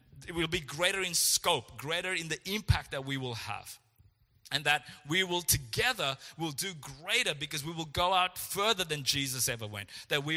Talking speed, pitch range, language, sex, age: 195 wpm, 130-170 Hz, English, male, 30-49